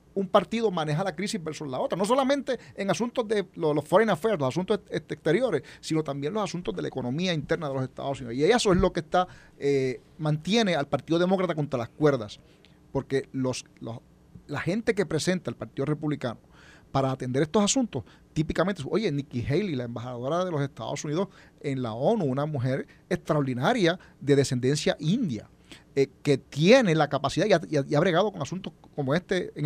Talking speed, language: 180 wpm, Spanish